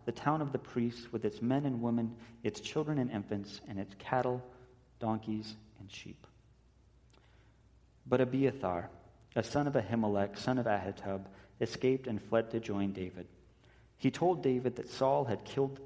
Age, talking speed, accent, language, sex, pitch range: 40-59, 165 wpm, American, English, male, 105-125 Hz